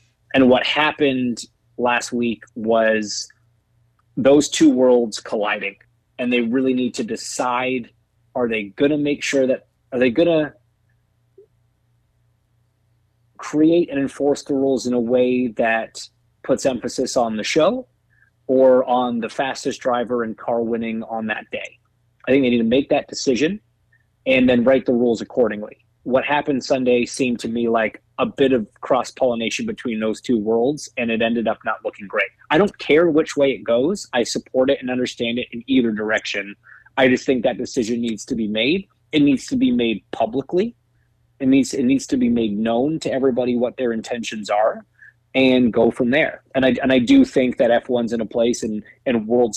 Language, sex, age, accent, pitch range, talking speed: English, male, 30-49, American, 115-130 Hz, 185 wpm